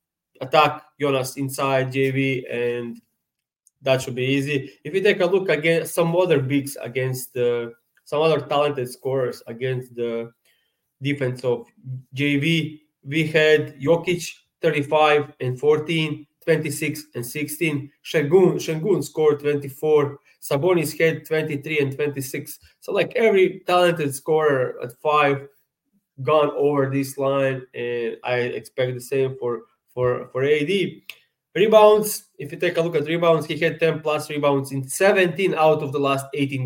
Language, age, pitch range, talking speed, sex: English, 20-39, 130-160 Hz, 140 wpm, male